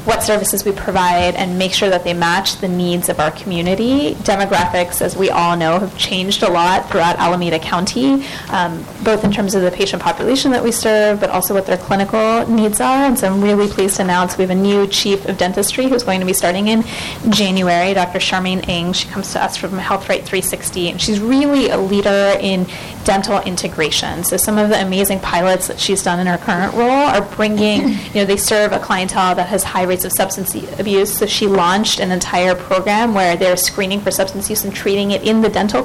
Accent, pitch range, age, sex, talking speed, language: American, 185-210 Hz, 20-39, female, 215 wpm, English